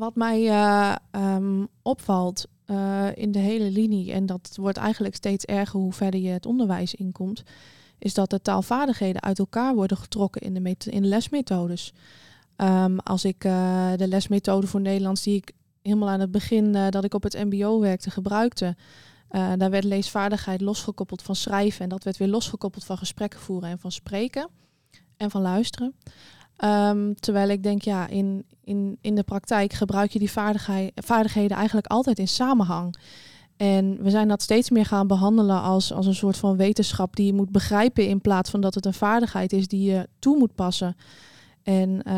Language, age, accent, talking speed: Dutch, 20-39, Dutch, 180 wpm